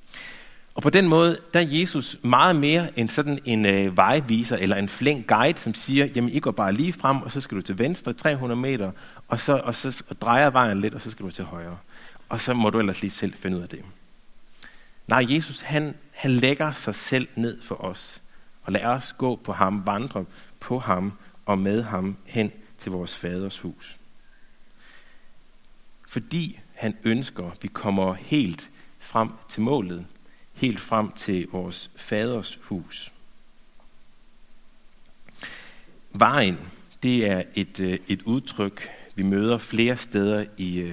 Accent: native